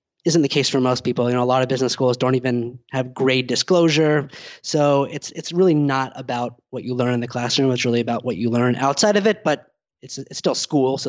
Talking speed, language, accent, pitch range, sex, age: 245 wpm, English, American, 130-155 Hz, male, 20-39